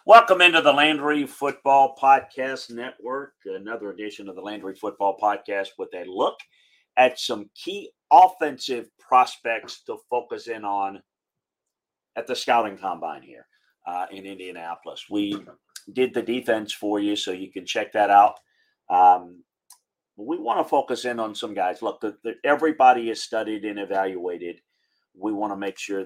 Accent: American